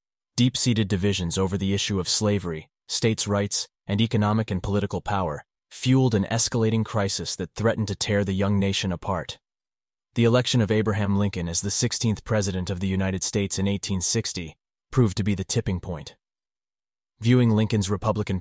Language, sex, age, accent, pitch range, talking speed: English, male, 30-49, American, 95-115 Hz, 165 wpm